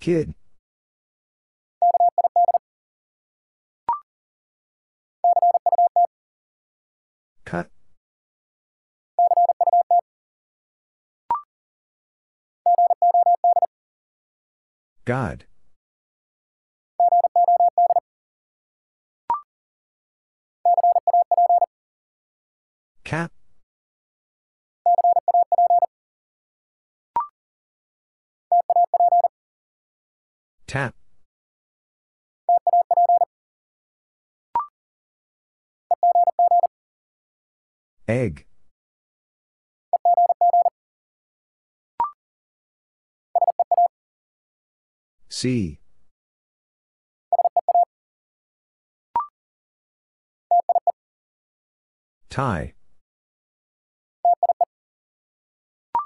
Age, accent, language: 40-59, American, English